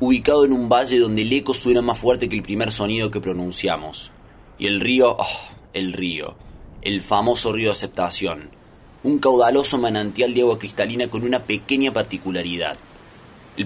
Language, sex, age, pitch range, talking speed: Spanish, male, 20-39, 100-130 Hz, 165 wpm